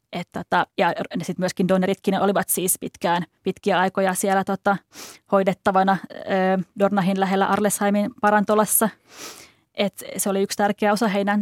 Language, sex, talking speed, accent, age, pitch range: Finnish, female, 130 wpm, native, 20-39, 185-210 Hz